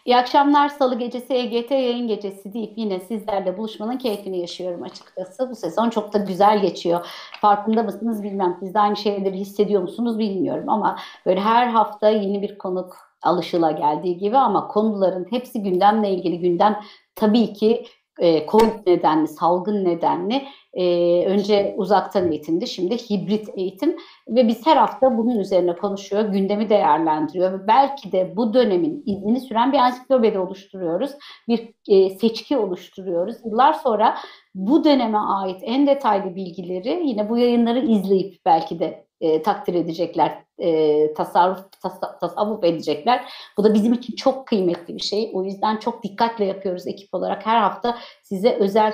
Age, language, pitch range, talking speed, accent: 60-79, Turkish, 185-225 Hz, 150 wpm, native